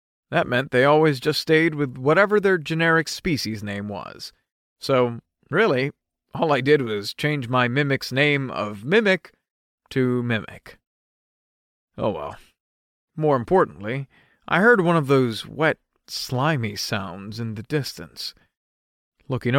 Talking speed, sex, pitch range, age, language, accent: 130 wpm, male, 110-150 Hz, 40-59, English, American